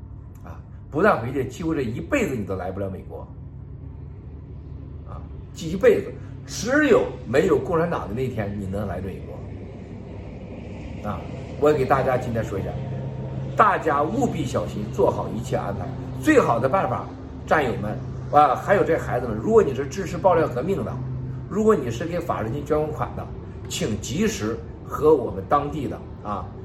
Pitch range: 100-145 Hz